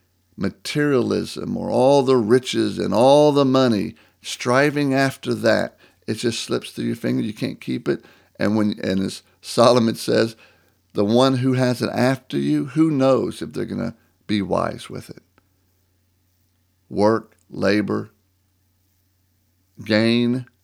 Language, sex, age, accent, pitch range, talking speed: English, male, 50-69, American, 95-125 Hz, 135 wpm